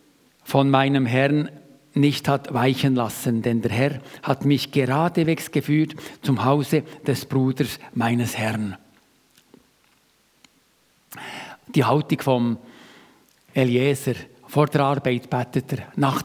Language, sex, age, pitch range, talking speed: German, male, 50-69, 130-170 Hz, 110 wpm